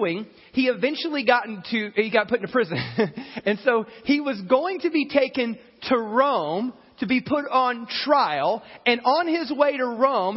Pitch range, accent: 165-240 Hz, American